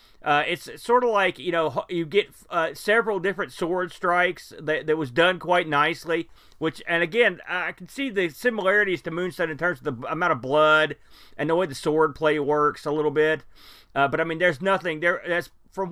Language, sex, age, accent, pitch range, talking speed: English, male, 40-59, American, 140-185 Hz, 210 wpm